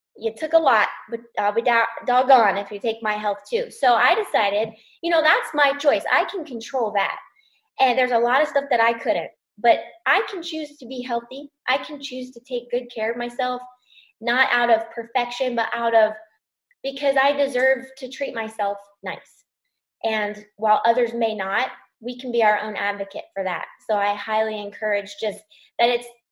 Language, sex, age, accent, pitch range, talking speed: English, female, 10-29, American, 215-275 Hz, 195 wpm